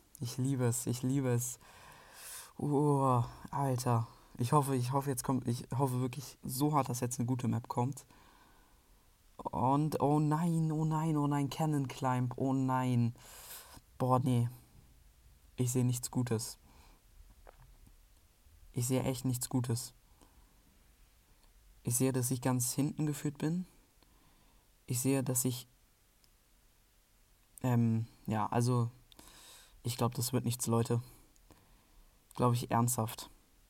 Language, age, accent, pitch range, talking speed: German, 20-39, German, 115-140 Hz, 125 wpm